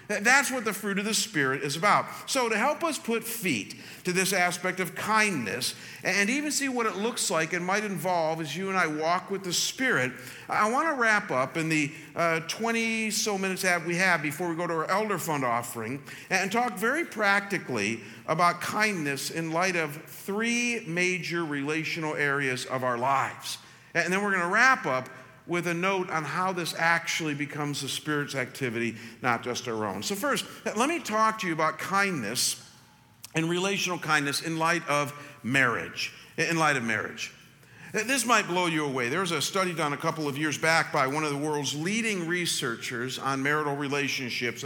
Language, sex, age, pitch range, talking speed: English, male, 50-69, 145-195 Hz, 190 wpm